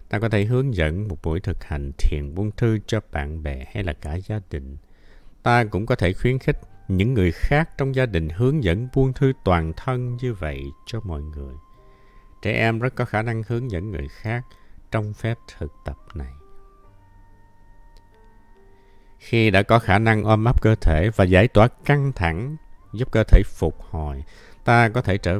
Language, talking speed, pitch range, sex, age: Vietnamese, 190 wpm, 85-115 Hz, male, 60-79